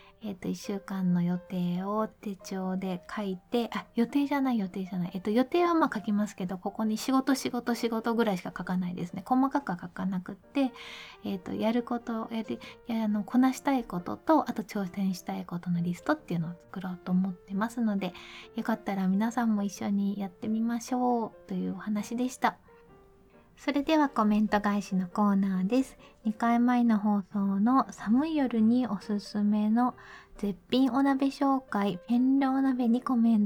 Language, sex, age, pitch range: Japanese, female, 20-39, 200-250 Hz